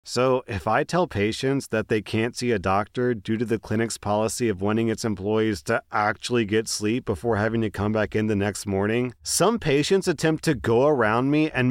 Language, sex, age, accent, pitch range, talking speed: English, male, 30-49, American, 115-150 Hz, 210 wpm